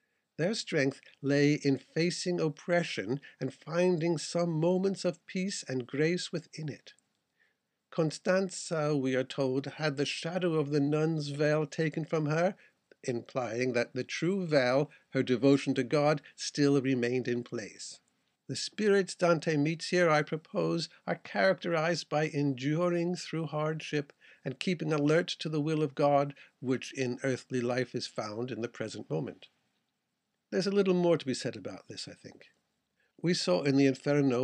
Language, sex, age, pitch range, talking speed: English, male, 60-79, 135-175 Hz, 155 wpm